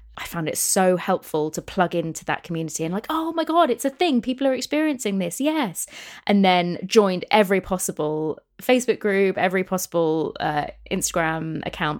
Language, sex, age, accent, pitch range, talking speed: English, female, 20-39, British, 160-220 Hz, 175 wpm